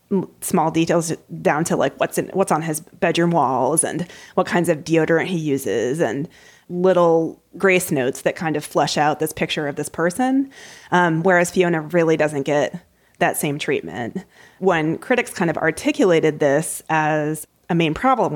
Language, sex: English, female